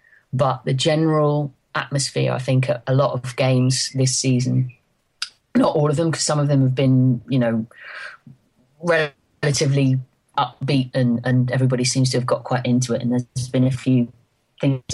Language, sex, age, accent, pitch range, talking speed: English, female, 30-49, British, 125-145 Hz, 170 wpm